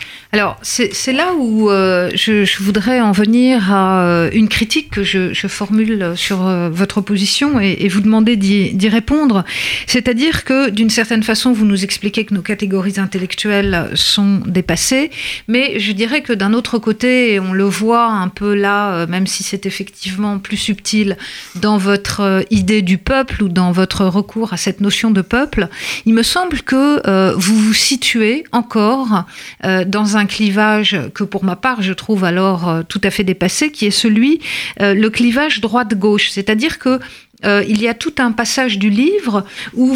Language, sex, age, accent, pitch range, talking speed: French, female, 50-69, French, 200-240 Hz, 185 wpm